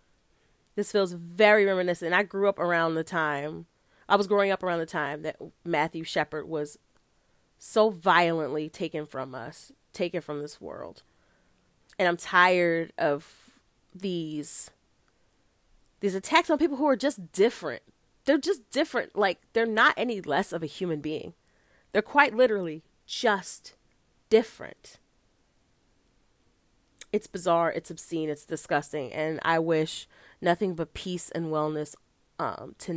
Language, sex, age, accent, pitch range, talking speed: English, female, 30-49, American, 150-185 Hz, 140 wpm